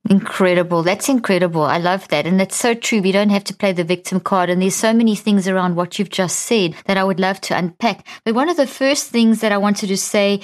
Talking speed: 260 wpm